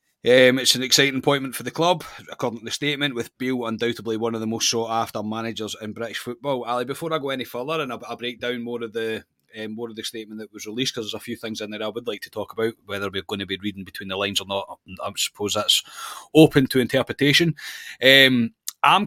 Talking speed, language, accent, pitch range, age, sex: 245 wpm, English, British, 110-130 Hz, 30-49, male